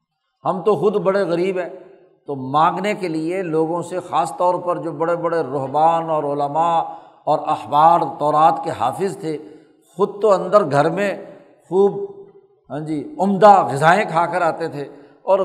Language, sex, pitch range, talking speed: Urdu, male, 155-185 Hz, 165 wpm